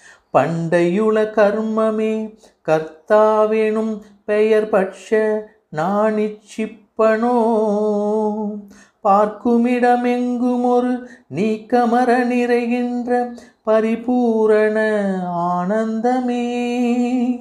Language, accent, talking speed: Tamil, native, 35 wpm